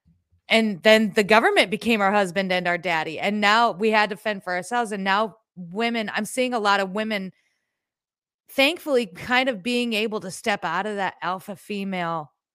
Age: 30-49